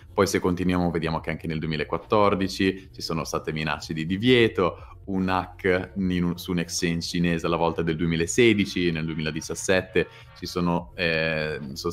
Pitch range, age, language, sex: 85-110 Hz, 30-49, Italian, male